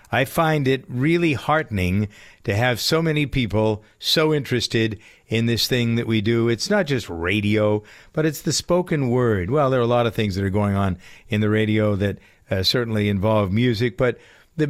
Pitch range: 100-130 Hz